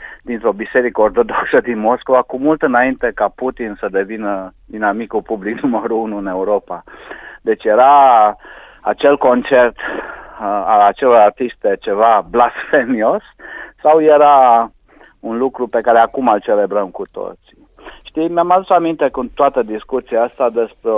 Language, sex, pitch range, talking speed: Romanian, male, 110-155 Hz, 135 wpm